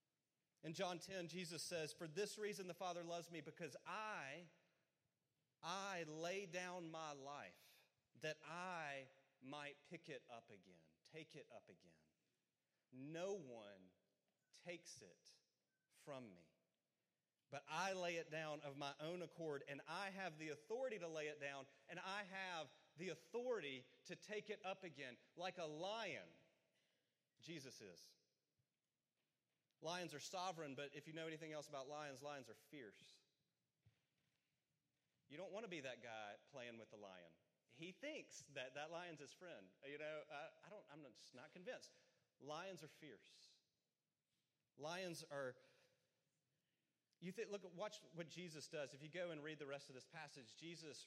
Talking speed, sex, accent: 155 wpm, male, American